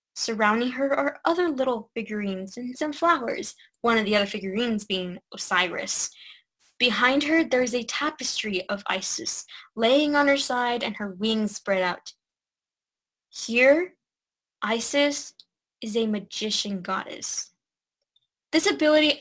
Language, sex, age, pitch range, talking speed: English, female, 10-29, 210-275 Hz, 130 wpm